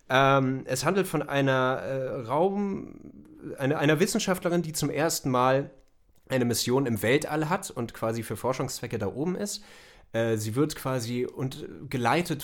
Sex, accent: male, German